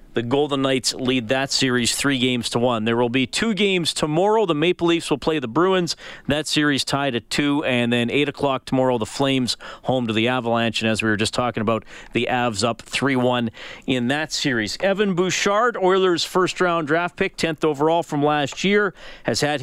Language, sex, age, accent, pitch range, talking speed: English, male, 40-59, American, 120-165 Hz, 200 wpm